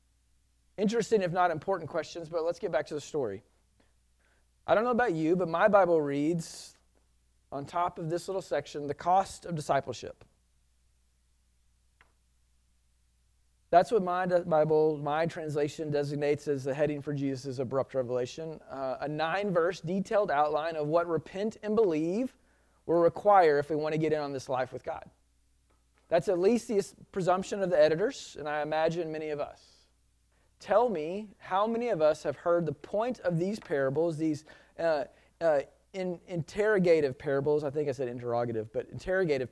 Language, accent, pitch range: English, American, 130-175 Hz